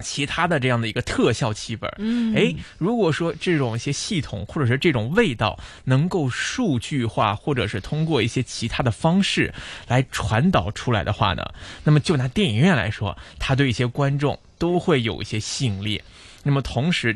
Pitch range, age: 105-135 Hz, 20-39